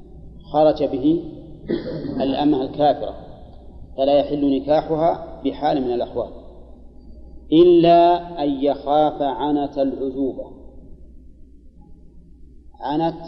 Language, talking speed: Arabic, 70 wpm